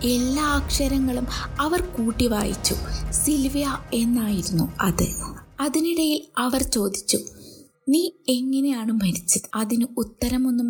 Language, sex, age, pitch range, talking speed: Malayalam, female, 20-39, 215-280 Hz, 90 wpm